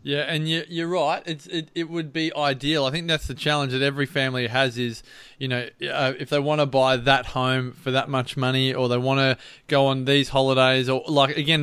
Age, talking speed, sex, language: 20-39, 220 wpm, male, English